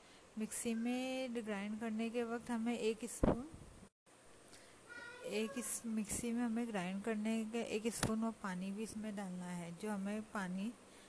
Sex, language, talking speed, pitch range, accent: female, Hindi, 145 wpm, 200-230 Hz, native